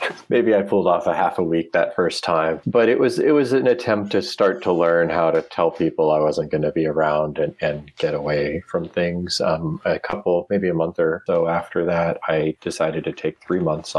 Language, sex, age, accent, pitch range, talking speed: English, male, 40-59, American, 75-105 Hz, 230 wpm